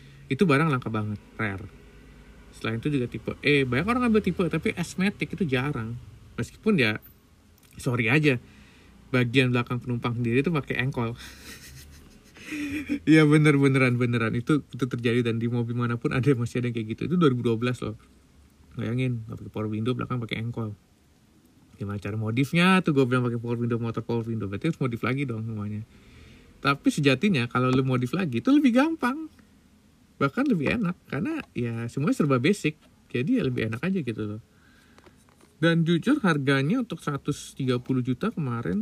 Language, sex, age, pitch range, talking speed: Indonesian, male, 30-49, 115-160 Hz, 160 wpm